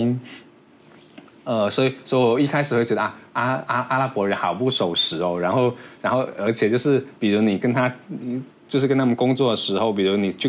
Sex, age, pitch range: male, 20-39, 105-135 Hz